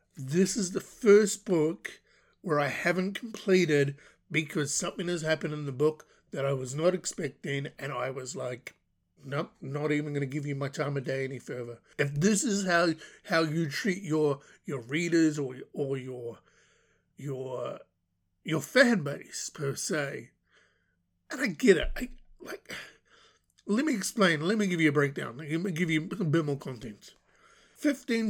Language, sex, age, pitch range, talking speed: English, male, 50-69, 145-195 Hz, 170 wpm